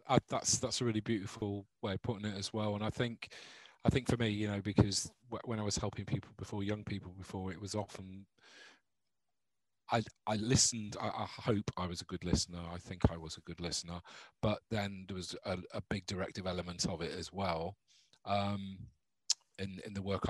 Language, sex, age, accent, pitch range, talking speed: English, male, 30-49, British, 95-115 Hz, 210 wpm